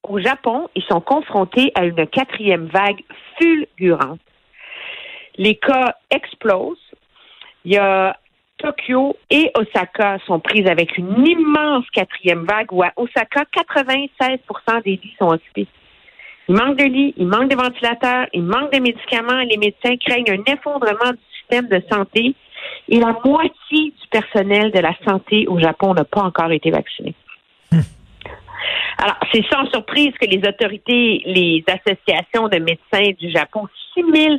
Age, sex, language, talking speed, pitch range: 50-69, female, French, 150 wpm, 190-270 Hz